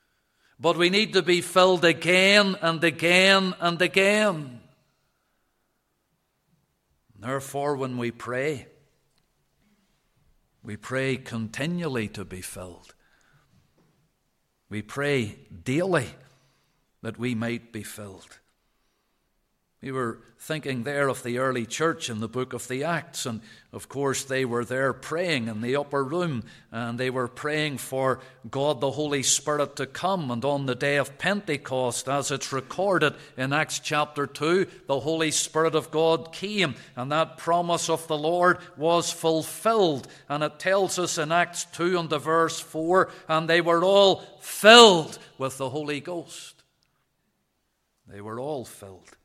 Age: 50-69